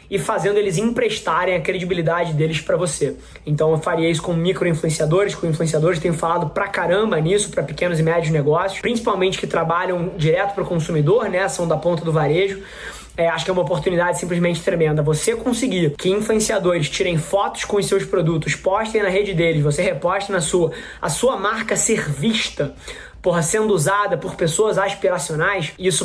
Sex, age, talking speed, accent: male, 20-39, 180 wpm, Brazilian